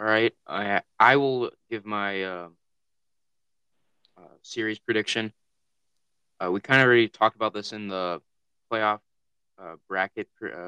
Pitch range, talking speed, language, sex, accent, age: 90-110 Hz, 145 wpm, English, male, American, 20-39